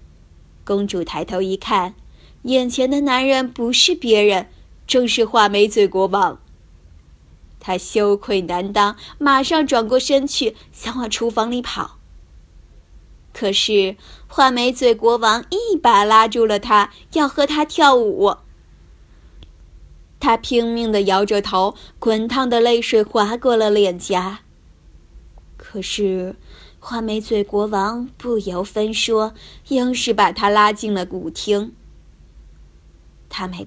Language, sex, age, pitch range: Chinese, female, 20-39, 180-250 Hz